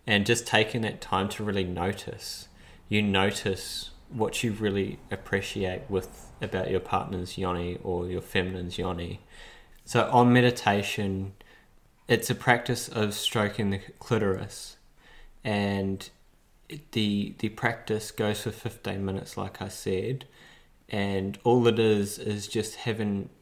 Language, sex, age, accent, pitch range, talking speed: English, male, 20-39, Australian, 95-110 Hz, 130 wpm